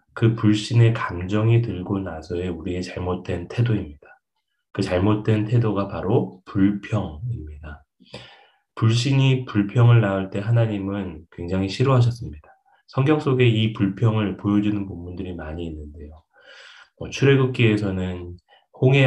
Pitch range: 90-115 Hz